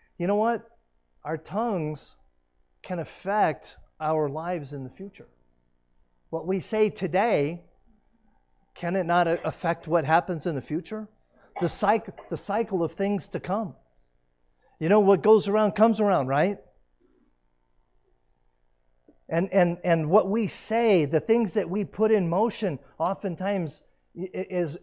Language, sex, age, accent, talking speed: English, male, 40-59, American, 130 wpm